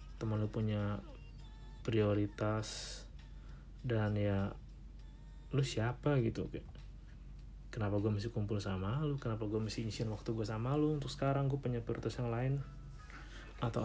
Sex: male